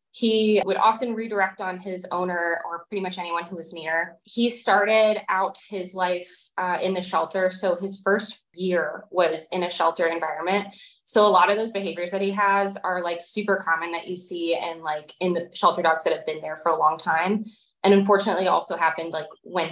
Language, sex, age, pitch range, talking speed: English, female, 20-39, 170-210 Hz, 205 wpm